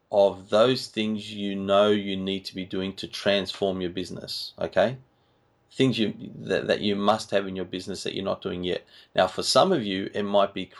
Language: English